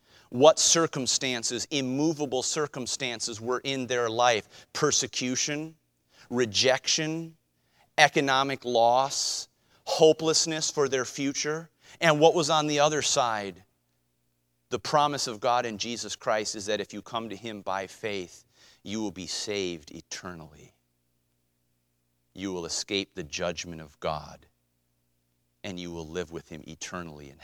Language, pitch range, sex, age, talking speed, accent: English, 80-130 Hz, male, 40-59, 130 wpm, American